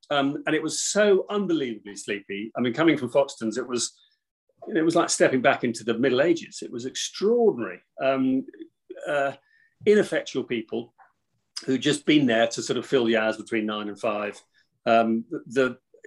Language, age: English, 40-59